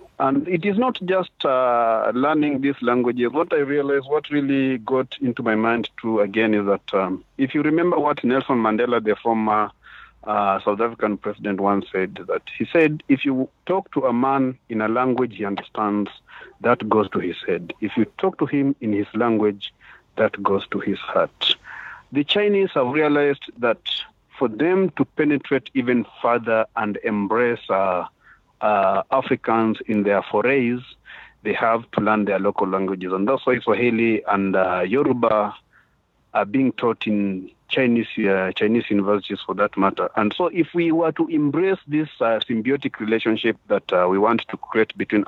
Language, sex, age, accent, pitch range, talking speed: English, male, 50-69, South African, 105-140 Hz, 175 wpm